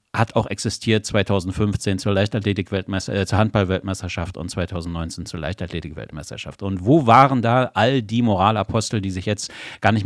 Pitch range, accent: 95-115 Hz, German